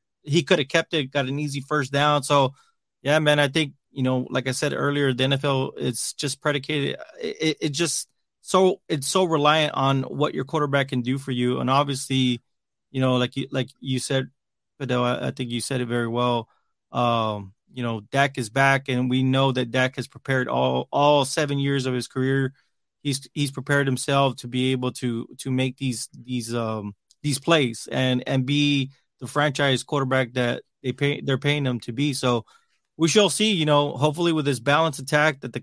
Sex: male